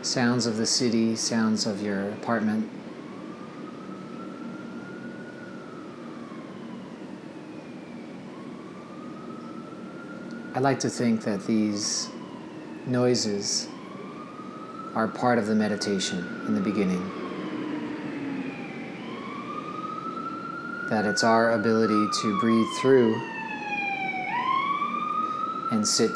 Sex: male